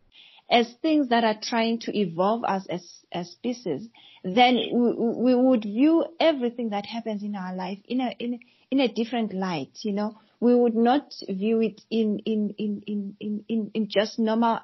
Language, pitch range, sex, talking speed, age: English, 185-230 Hz, female, 175 wpm, 40-59